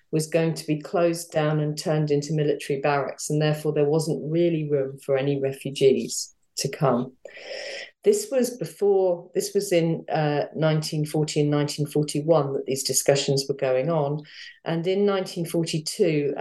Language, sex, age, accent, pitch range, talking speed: English, female, 40-59, British, 145-170 Hz, 150 wpm